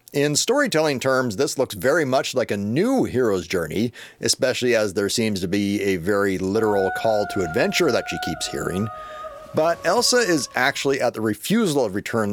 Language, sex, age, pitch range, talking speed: English, male, 40-59, 105-145 Hz, 180 wpm